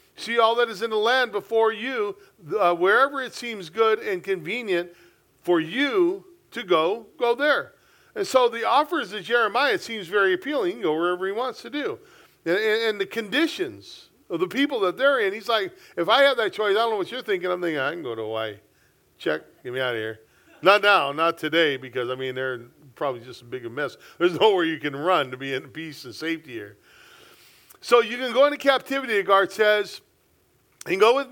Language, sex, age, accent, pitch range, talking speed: English, male, 40-59, American, 175-265 Hz, 220 wpm